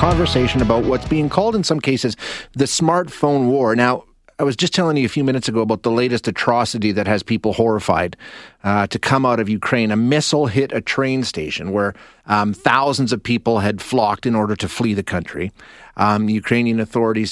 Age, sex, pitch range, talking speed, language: 30-49, male, 110-135 Hz, 200 wpm, English